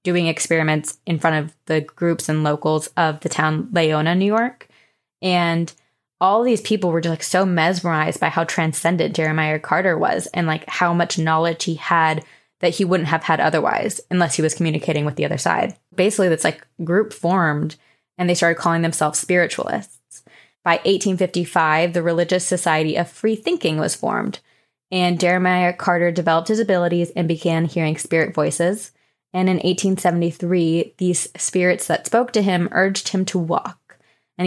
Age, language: 20-39, English